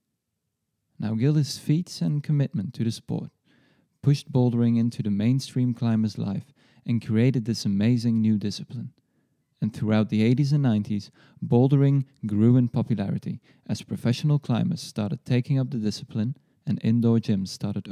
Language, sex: English, male